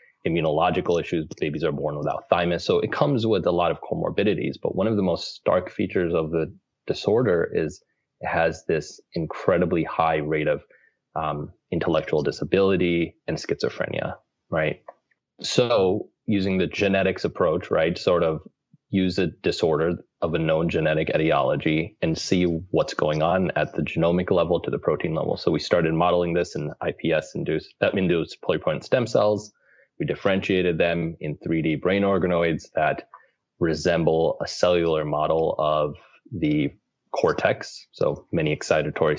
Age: 20-39